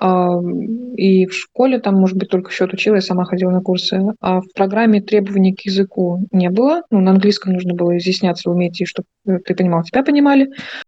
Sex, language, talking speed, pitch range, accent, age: female, Russian, 195 wpm, 185-215 Hz, native, 20-39